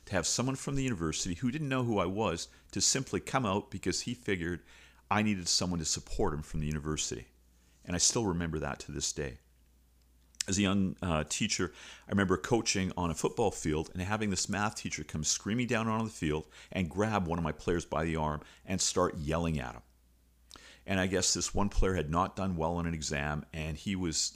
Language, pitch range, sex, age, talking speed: English, 75-100 Hz, male, 50-69, 215 wpm